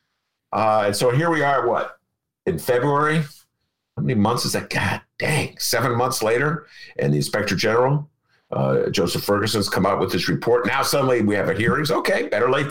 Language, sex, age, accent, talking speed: English, male, 50-69, American, 190 wpm